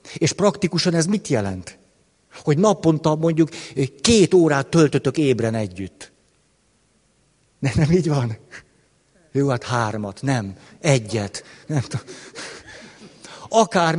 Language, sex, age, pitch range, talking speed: Hungarian, male, 60-79, 125-175 Hz, 105 wpm